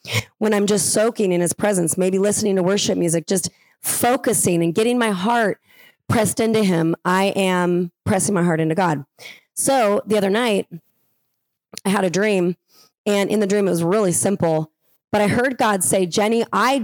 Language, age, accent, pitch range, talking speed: English, 30-49, American, 170-215 Hz, 180 wpm